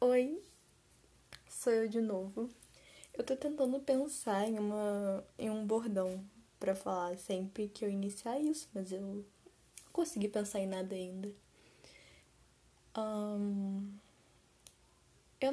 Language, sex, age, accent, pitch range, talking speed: Portuguese, female, 10-29, Brazilian, 190-245 Hz, 110 wpm